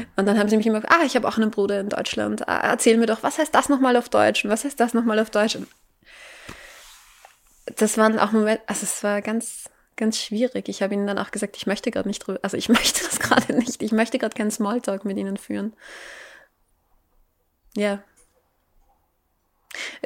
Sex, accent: female, German